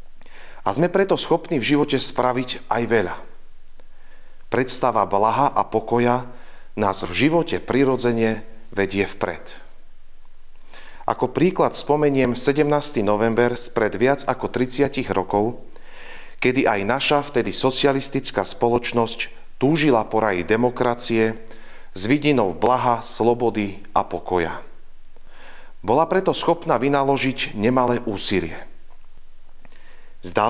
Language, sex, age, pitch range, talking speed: Slovak, male, 40-59, 115-140 Hz, 100 wpm